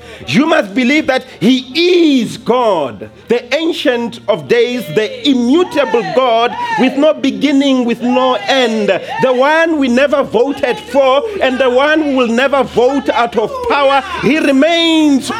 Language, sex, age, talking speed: English, male, 40-59, 150 wpm